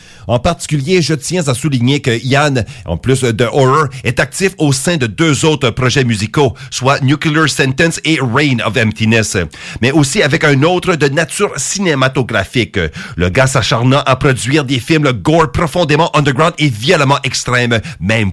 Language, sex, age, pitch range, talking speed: English, male, 40-59, 120-155 Hz, 165 wpm